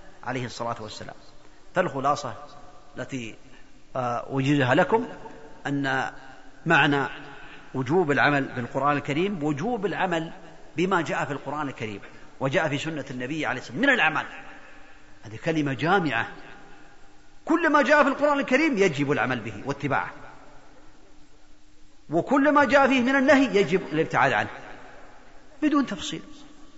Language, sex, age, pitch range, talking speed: Arabic, male, 40-59, 140-220 Hz, 120 wpm